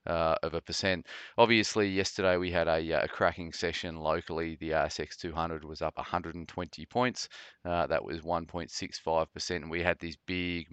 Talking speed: 170 wpm